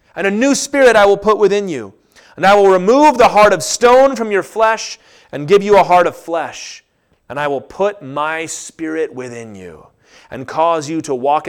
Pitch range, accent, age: 150-230 Hz, American, 30-49